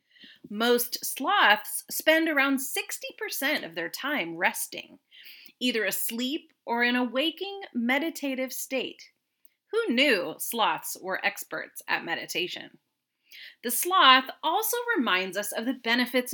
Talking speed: 120 wpm